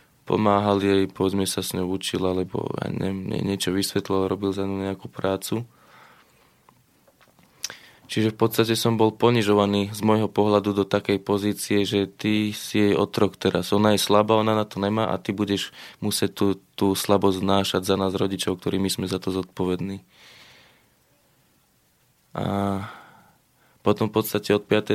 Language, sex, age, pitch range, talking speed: Slovak, male, 20-39, 95-105 Hz, 150 wpm